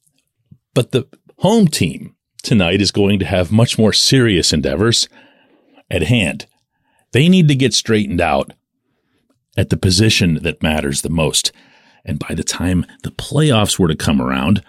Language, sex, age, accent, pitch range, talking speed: English, male, 40-59, American, 105-145 Hz, 155 wpm